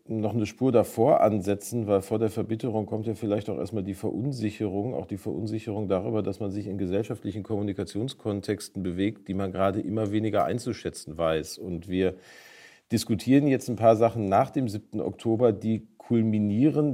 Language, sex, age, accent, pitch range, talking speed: German, male, 40-59, German, 95-115 Hz, 165 wpm